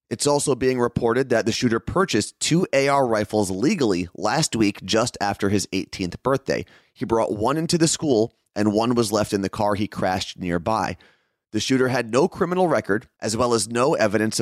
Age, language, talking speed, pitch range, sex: 30-49, English, 190 wpm, 100-125 Hz, male